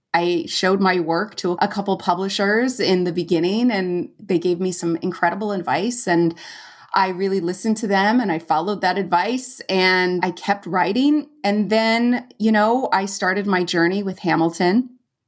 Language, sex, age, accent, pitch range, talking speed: English, female, 30-49, American, 175-210 Hz, 170 wpm